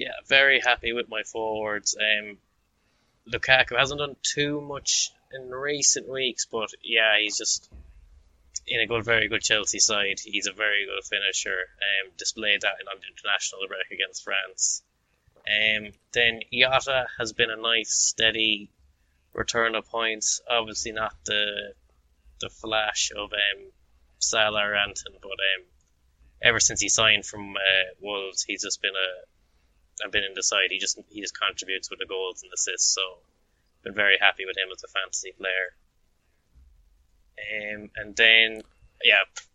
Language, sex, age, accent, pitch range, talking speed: English, male, 20-39, Irish, 95-120 Hz, 160 wpm